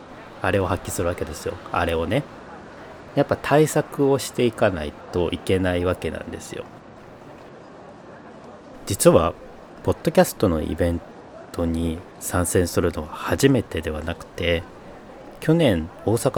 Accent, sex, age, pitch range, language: native, male, 40-59, 85-125 Hz, Japanese